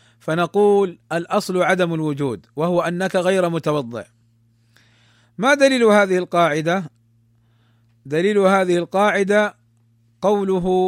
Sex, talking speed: male, 90 wpm